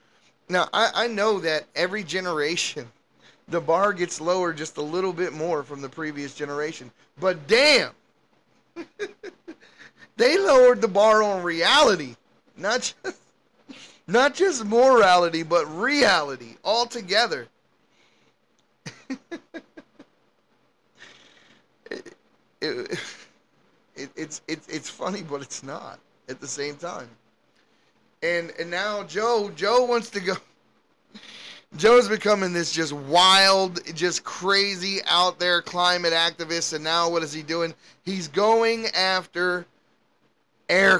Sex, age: male, 30-49